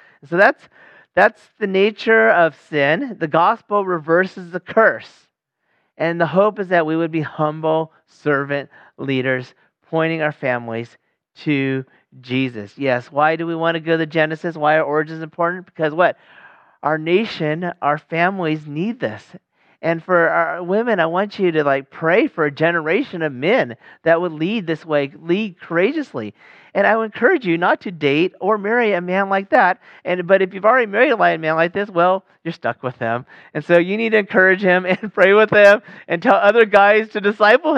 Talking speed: 185 wpm